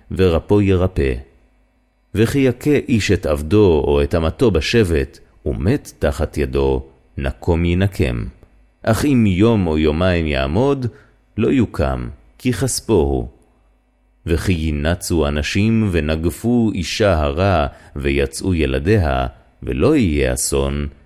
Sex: male